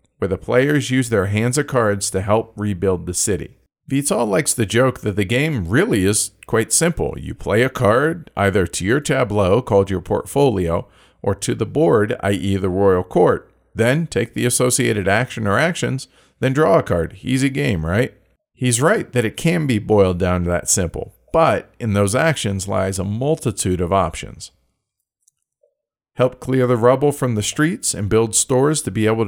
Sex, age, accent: male, 40-59, American